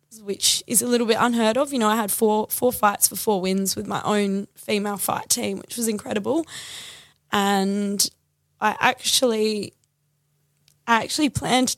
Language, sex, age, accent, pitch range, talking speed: English, female, 10-29, Australian, 175-205 Hz, 165 wpm